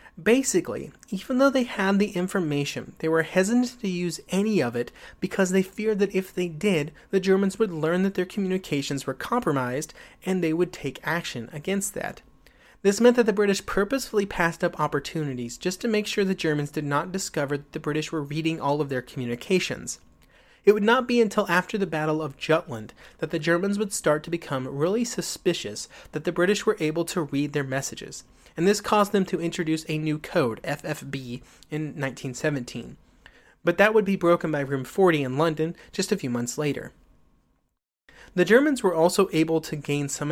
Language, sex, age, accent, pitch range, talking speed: English, male, 30-49, American, 145-190 Hz, 190 wpm